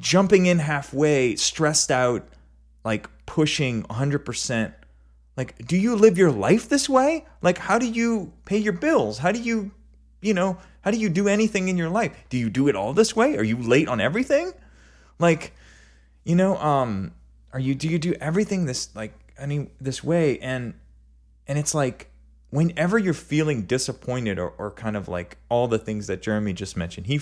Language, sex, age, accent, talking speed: English, male, 30-49, American, 190 wpm